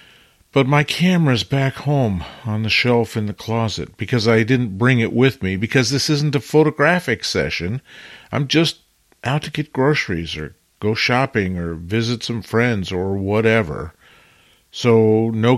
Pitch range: 95-135 Hz